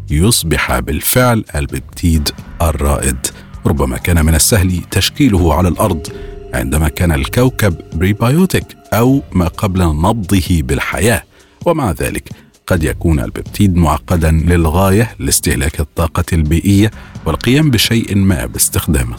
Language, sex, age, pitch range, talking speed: Arabic, male, 40-59, 80-105 Hz, 105 wpm